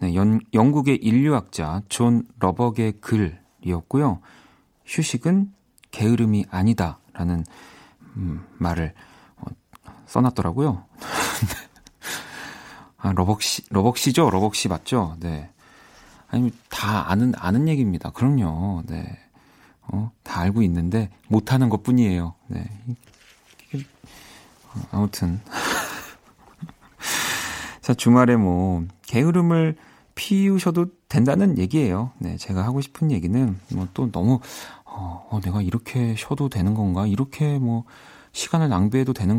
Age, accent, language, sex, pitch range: 40-59, native, Korean, male, 95-125 Hz